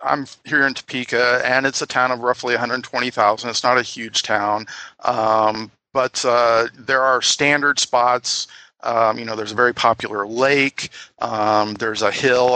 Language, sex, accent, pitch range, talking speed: English, male, American, 110-125 Hz, 165 wpm